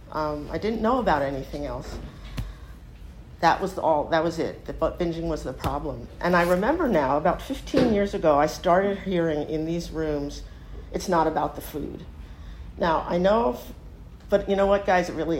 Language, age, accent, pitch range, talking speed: English, 50-69, American, 150-190 Hz, 190 wpm